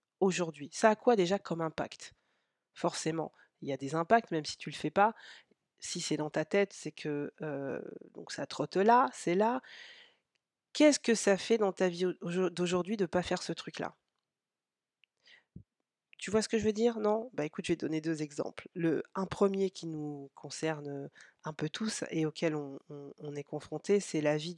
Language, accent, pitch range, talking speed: French, French, 160-215 Hz, 205 wpm